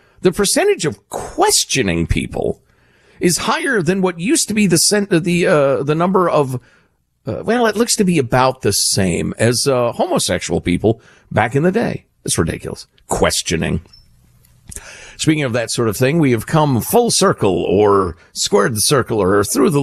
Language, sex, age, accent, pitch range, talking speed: English, male, 50-69, American, 115-195 Hz, 175 wpm